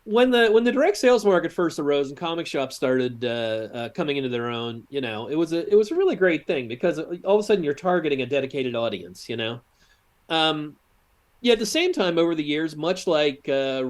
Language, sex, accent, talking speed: English, male, American, 240 wpm